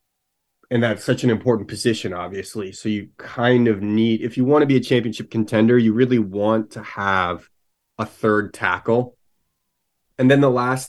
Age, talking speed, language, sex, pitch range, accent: 30-49, 175 wpm, English, male, 105-125 Hz, American